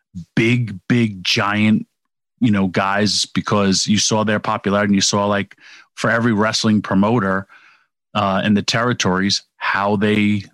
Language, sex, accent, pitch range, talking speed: English, male, American, 100-120 Hz, 140 wpm